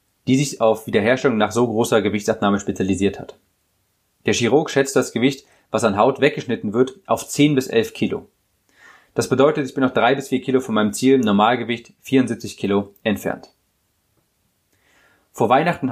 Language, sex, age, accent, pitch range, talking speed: German, male, 30-49, German, 105-135 Hz, 160 wpm